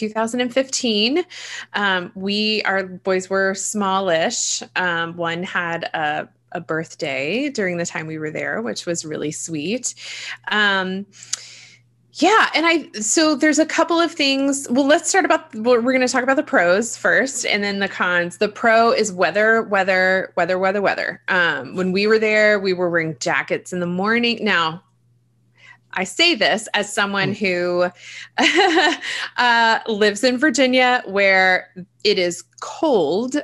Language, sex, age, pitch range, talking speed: English, female, 20-39, 180-230 Hz, 155 wpm